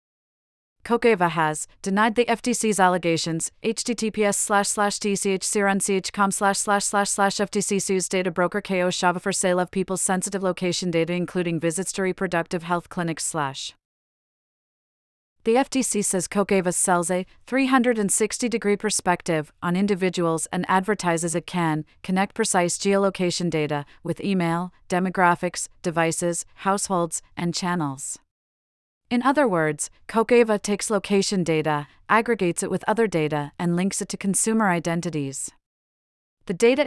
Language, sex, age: English, female, 30-49